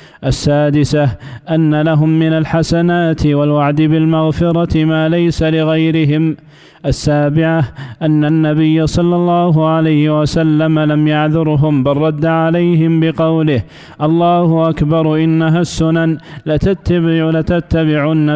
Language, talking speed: Arabic, 95 wpm